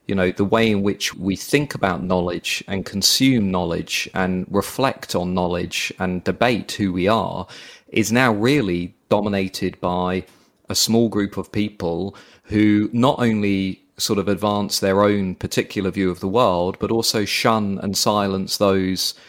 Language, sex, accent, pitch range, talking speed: English, male, British, 95-105 Hz, 160 wpm